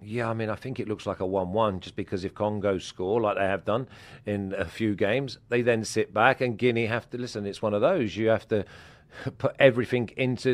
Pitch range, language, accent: 110-140 Hz, English, British